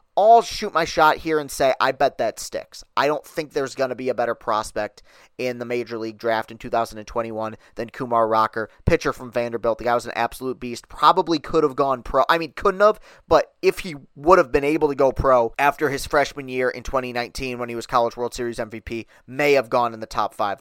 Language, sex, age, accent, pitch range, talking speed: English, male, 30-49, American, 125-160 Hz, 230 wpm